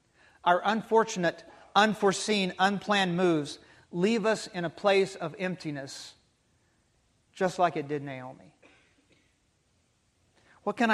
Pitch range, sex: 155-220 Hz, male